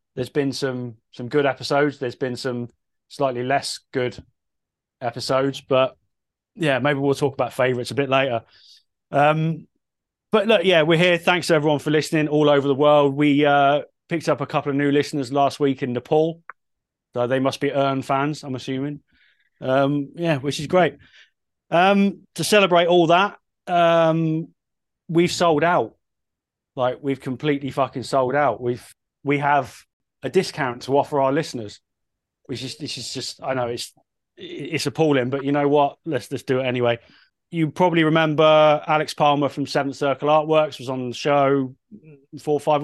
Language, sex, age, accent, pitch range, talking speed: English, male, 20-39, British, 130-155 Hz, 170 wpm